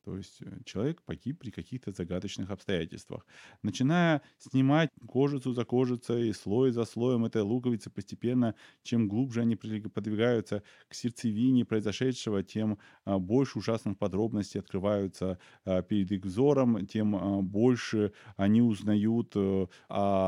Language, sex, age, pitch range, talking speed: Russian, male, 20-39, 95-120 Hz, 115 wpm